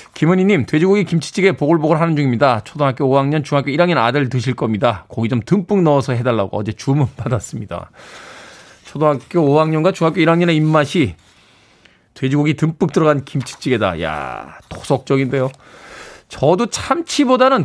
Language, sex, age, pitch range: Korean, male, 20-39, 120-165 Hz